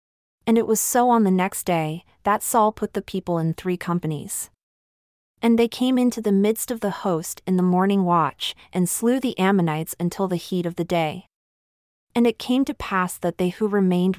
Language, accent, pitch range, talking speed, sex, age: English, American, 175-215 Hz, 205 wpm, female, 30-49